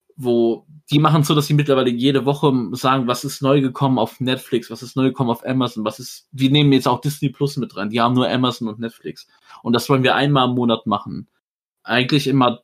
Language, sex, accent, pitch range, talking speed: German, male, German, 115-140 Hz, 235 wpm